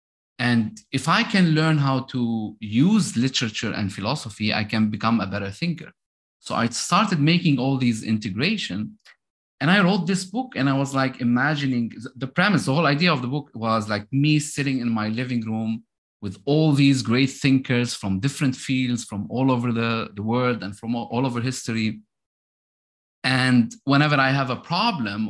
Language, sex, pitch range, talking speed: English, male, 105-140 Hz, 180 wpm